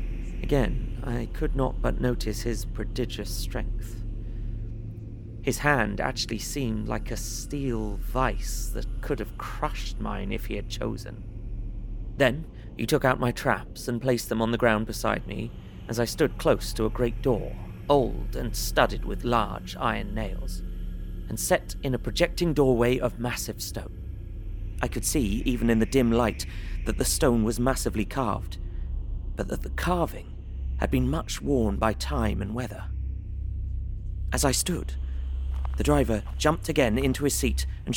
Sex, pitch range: male, 90-120 Hz